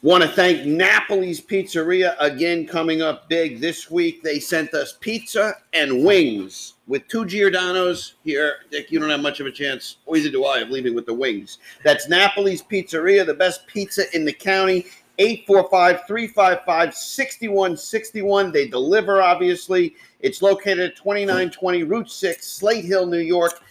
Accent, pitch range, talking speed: American, 145-195 Hz, 155 wpm